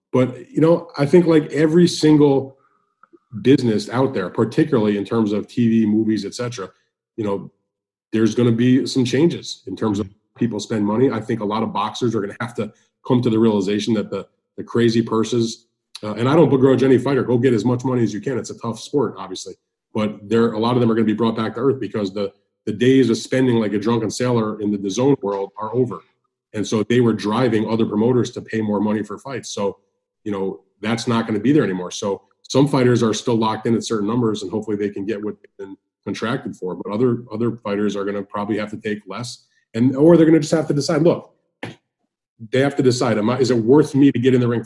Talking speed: 245 wpm